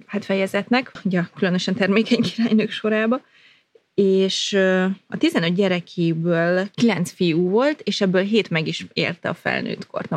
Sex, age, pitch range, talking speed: female, 30-49, 175-205 Hz, 135 wpm